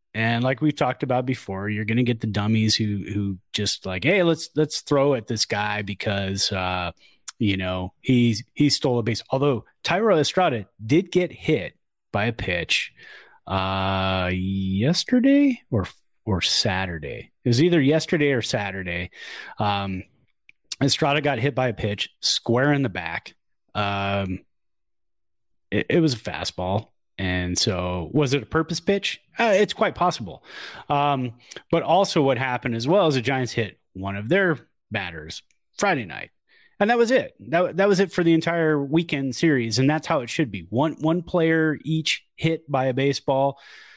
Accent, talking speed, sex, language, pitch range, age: American, 170 wpm, male, English, 105-155 Hz, 30-49